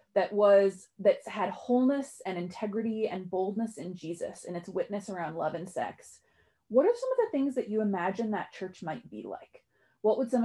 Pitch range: 180-230 Hz